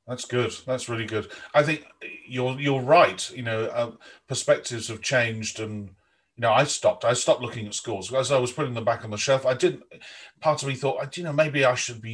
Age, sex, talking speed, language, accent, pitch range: 40-59, male, 235 wpm, English, British, 110-140 Hz